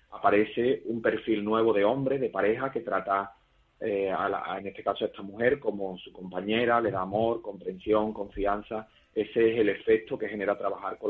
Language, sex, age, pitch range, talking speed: Spanish, male, 30-49, 100-110 Hz, 195 wpm